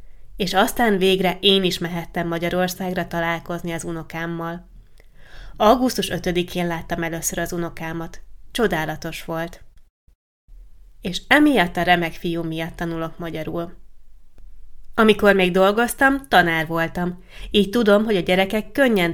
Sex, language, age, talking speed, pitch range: female, Hungarian, 20-39, 115 wpm, 165-200 Hz